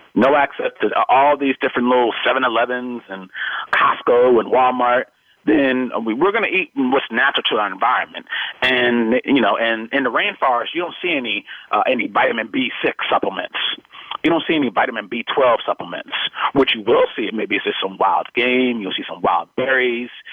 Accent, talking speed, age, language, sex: American, 175 wpm, 30-49, English, male